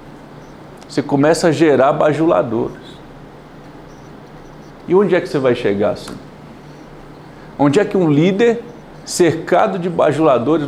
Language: Portuguese